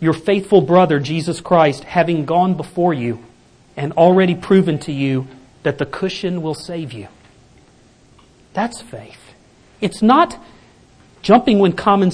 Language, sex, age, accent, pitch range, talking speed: English, male, 40-59, American, 160-215 Hz, 135 wpm